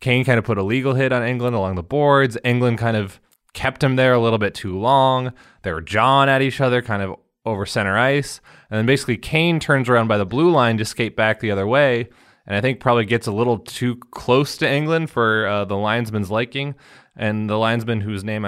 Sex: male